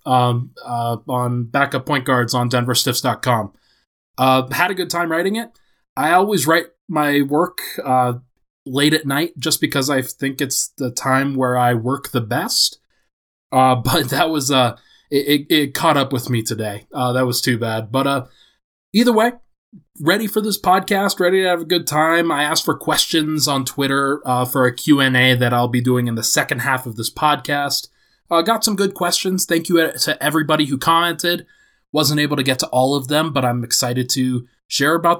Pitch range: 130-165 Hz